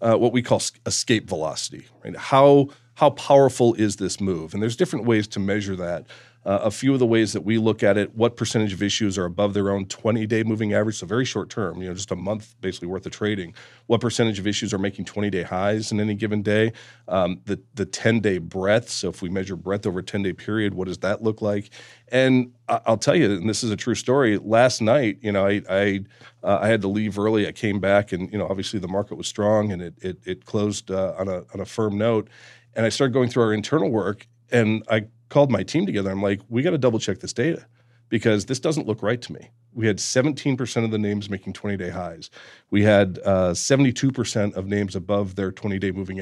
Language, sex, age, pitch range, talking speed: English, male, 40-59, 100-120 Hz, 235 wpm